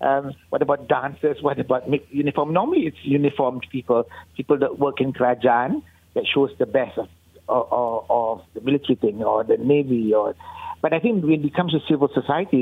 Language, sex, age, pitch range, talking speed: English, male, 60-79, 135-160 Hz, 175 wpm